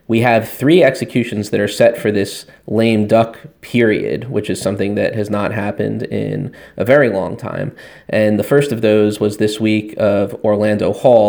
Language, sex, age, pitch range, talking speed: English, male, 20-39, 105-115 Hz, 185 wpm